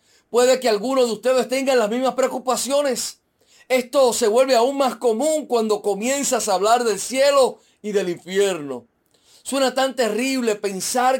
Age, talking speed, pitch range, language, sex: 40-59, 150 wpm, 215-270 Hz, Spanish, male